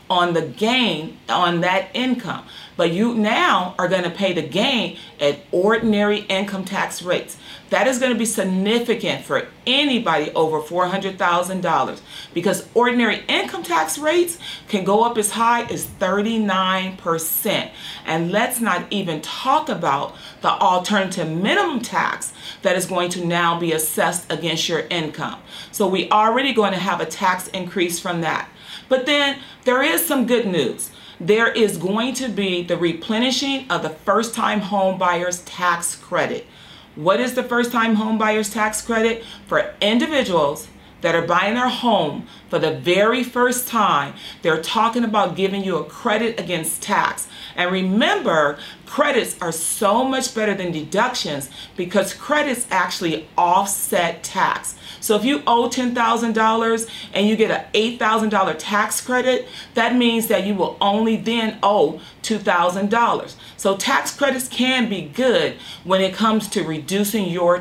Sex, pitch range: female, 180-230 Hz